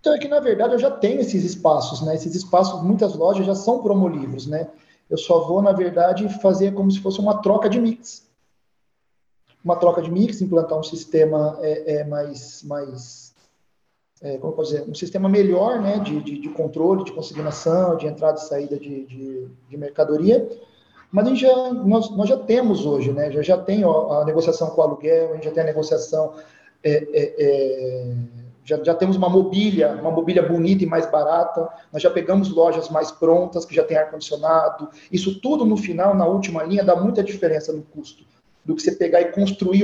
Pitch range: 155-195 Hz